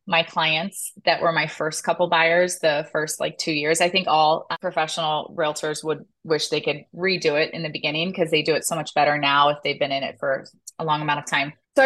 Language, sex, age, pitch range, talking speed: English, female, 20-39, 155-190 Hz, 240 wpm